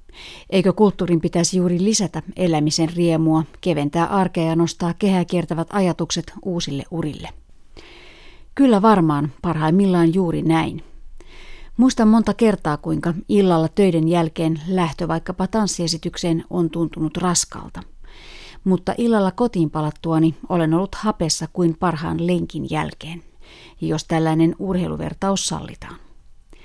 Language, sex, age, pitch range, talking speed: Finnish, female, 30-49, 165-195 Hz, 110 wpm